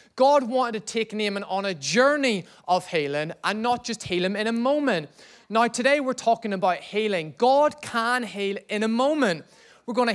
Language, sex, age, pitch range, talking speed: English, male, 20-39, 190-255 Hz, 190 wpm